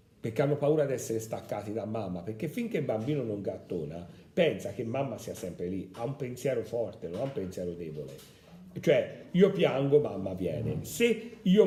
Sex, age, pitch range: male, 50-69, 100-150 Hz